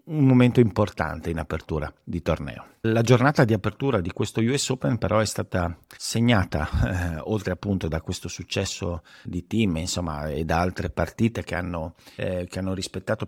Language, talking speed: Italian, 165 wpm